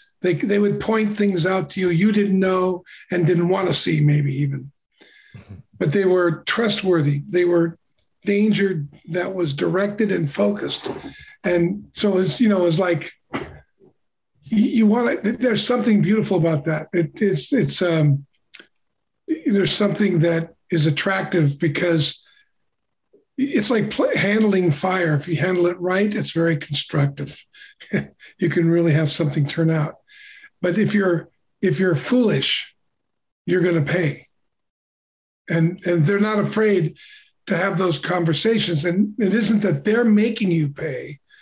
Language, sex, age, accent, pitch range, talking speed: English, male, 50-69, American, 165-210 Hz, 150 wpm